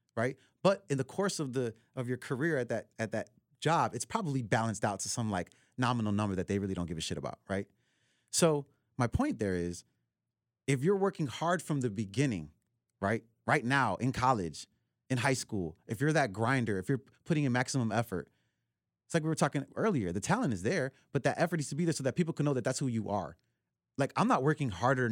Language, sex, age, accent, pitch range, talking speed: English, male, 30-49, American, 115-155 Hz, 225 wpm